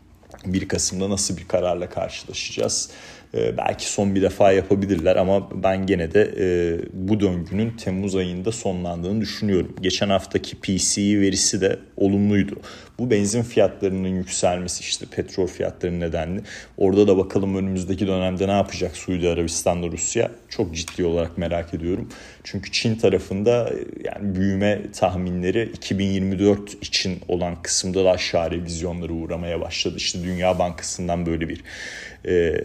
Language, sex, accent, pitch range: Turkish, male, native, 90-100 Hz